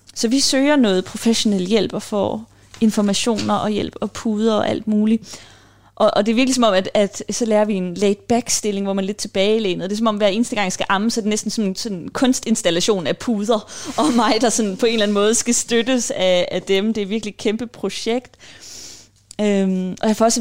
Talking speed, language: 235 wpm, Danish